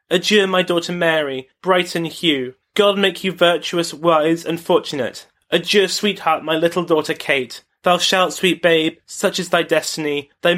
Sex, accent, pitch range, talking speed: male, British, 150-180 Hz, 165 wpm